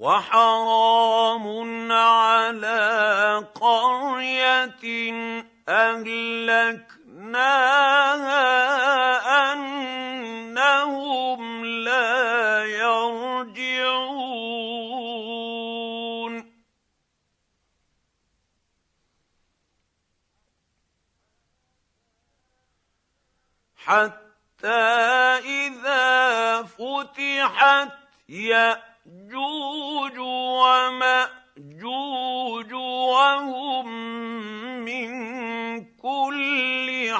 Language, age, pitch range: Arabic, 50-69, 225-260 Hz